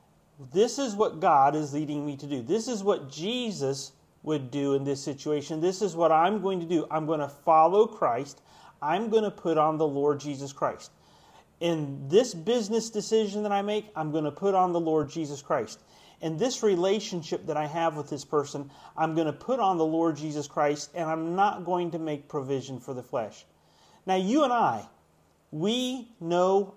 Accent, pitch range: American, 150-200 Hz